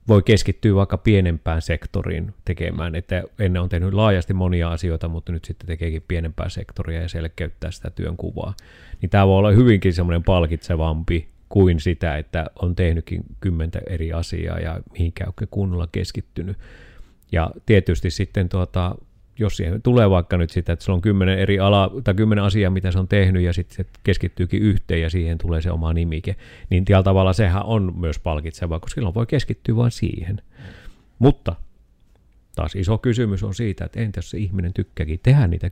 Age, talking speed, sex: 30-49, 175 wpm, male